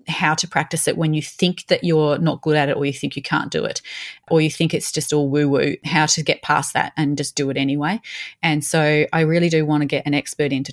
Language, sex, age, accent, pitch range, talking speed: English, female, 30-49, Australian, 145-170 Hz, 275 wpm